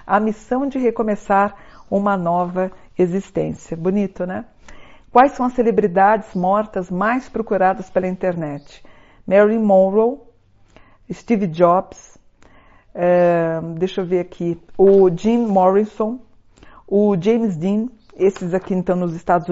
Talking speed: 115 wpm